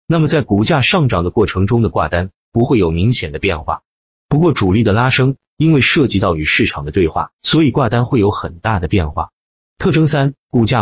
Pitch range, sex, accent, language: 90-130 Hz, male, native, Chinese